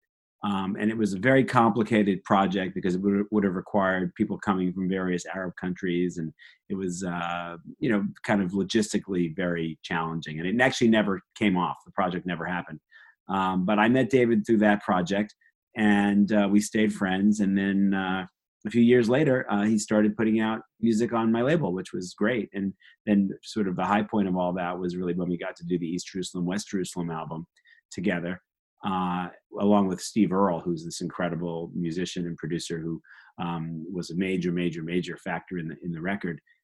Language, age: English, 30-49